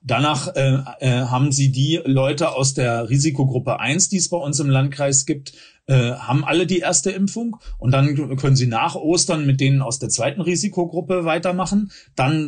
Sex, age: male, 40-59